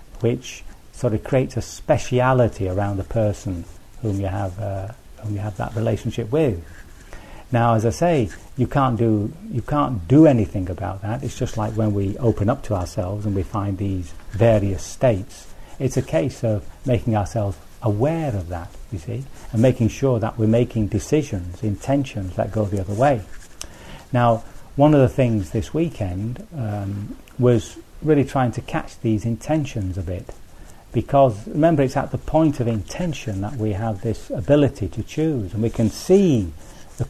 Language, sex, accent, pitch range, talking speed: English, male, British, 100-130 Hz, 175 wpm